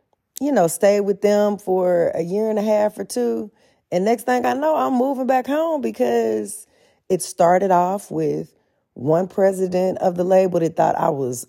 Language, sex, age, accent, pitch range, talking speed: English, female, 30-49, American, 150-200 Hz, 190 wpm